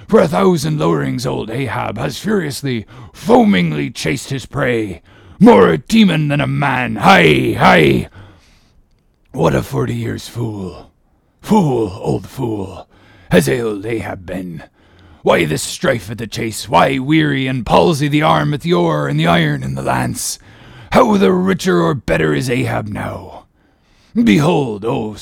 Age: 30-49